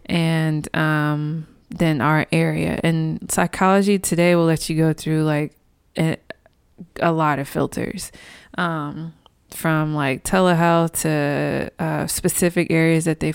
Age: 20-39